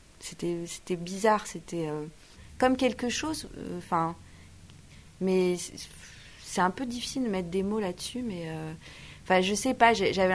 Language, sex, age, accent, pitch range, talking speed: French, female, 30-49, French, 175-215 Hz, 145 wpm